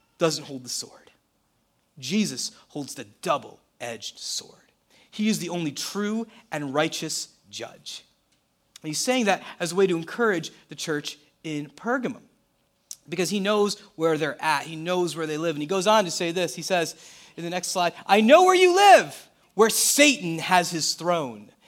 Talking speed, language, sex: 175 wpm, English, male